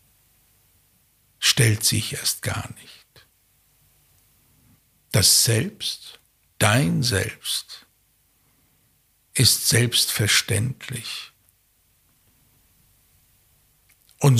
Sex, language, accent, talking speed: male, German, German, 50 wpm